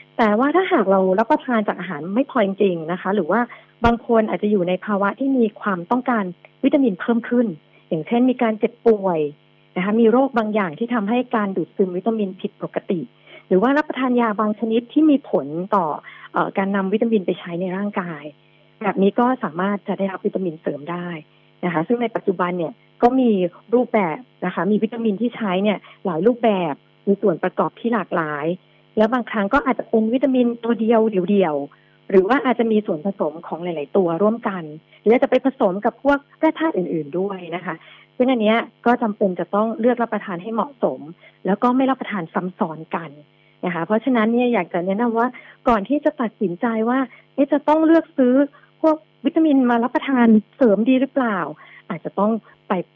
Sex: female